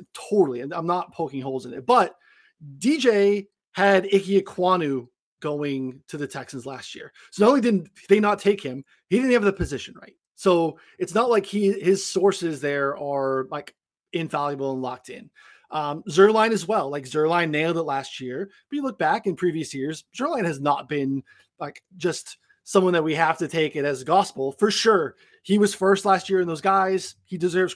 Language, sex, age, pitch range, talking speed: English, male, 30-49, 140-195 Hz, 195 wpm